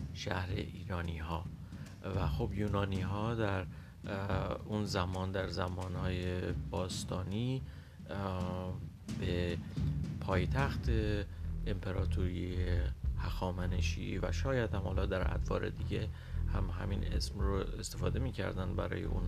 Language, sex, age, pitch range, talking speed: Persian, male, 40-59, 85-105 Hz, 105 wpm